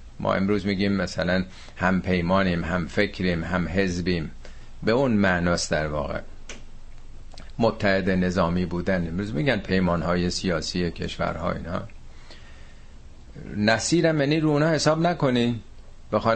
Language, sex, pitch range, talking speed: Persian, male, 85-110 Hz, 115 wpm